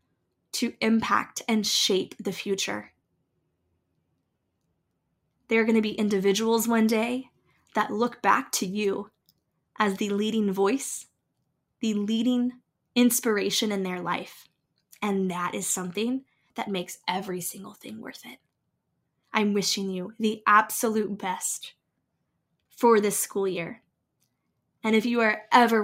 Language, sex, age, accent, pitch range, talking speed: English, female, 10-29, American, 195-225 Hz, 130 wpm